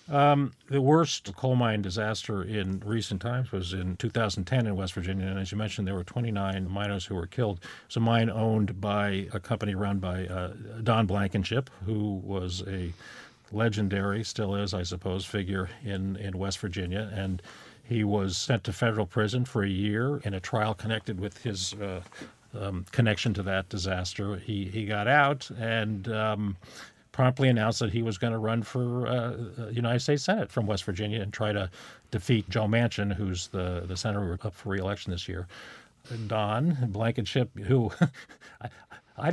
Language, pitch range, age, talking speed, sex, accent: English, 100-120 Hz, 50-69, 175 wpm, male, American